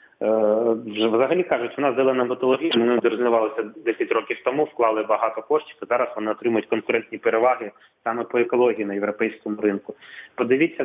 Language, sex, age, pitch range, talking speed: English, male, 30-49, 115-140 Hz, 145 wpm